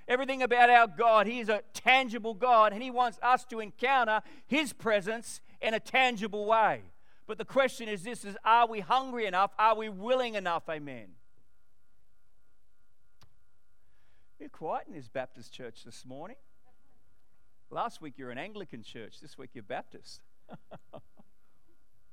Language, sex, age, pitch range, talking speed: English, male, 40-59, 155-220 Hz, 145 wpm